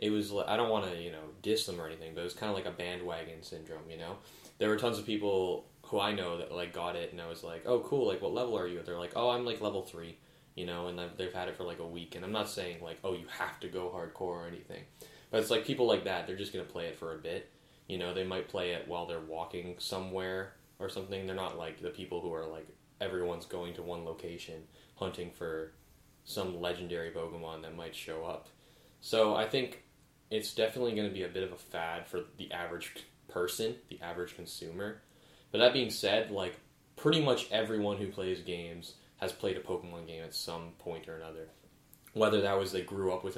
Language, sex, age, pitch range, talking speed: English, male, 10-29, 85-100 Hz, 240 wpm